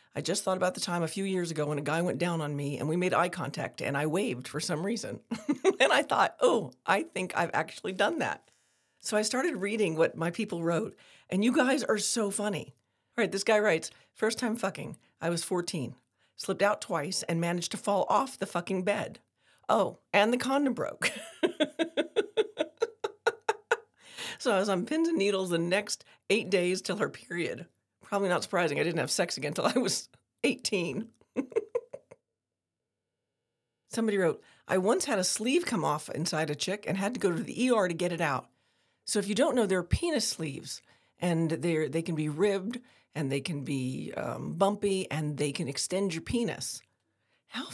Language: English